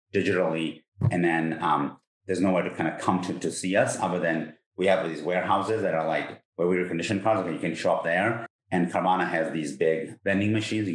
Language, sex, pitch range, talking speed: English, male, 85-110 Hz, 220 wpm